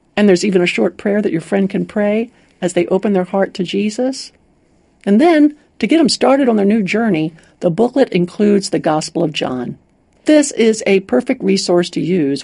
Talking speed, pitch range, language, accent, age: 205 wpm, 180-250 Hz, English, American, 60-79